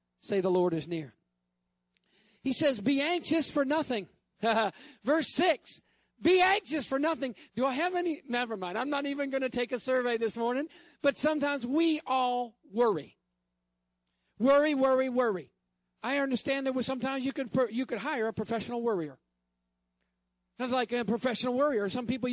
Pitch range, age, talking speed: 170-265 Hz, 50-69, 155 wpm